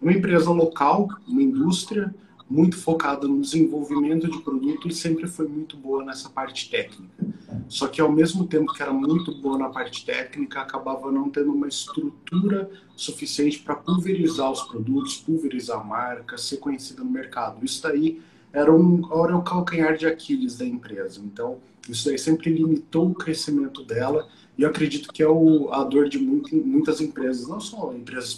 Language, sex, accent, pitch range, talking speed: Portuguese, male, Brazilian, 125-175 Hz, 170 wpm